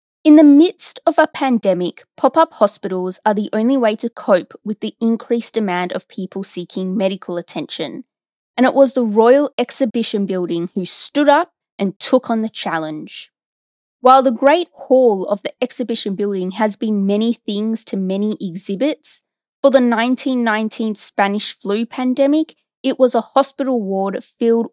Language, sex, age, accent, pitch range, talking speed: English, female, 20-39, Australian, 195-250 Hz, 160 wpm